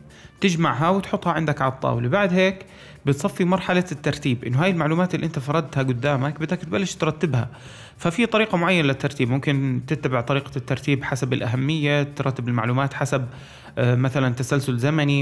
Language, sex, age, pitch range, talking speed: Arabic, male, 30-49, 130-155 Hz, 140 wpm